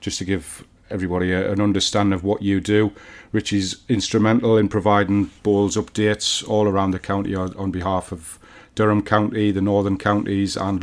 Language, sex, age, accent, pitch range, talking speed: English, male, 40-59, British, 95-110 Hz, 165 wpm